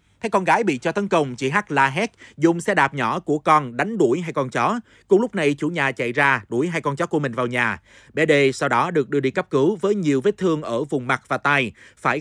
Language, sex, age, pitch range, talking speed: Vietnamese, male, 30-49, 130-170 Hz, 275 wpm